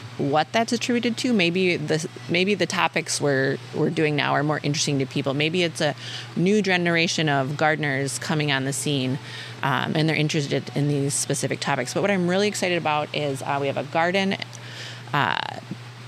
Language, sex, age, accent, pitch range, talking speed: English, female, 30-49, American, 130-170 Hz, 185 wpm